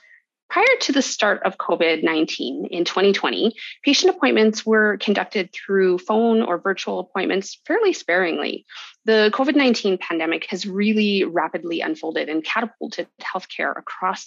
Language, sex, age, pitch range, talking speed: English, female, 30-49, 175-240 Hz, 125 wpm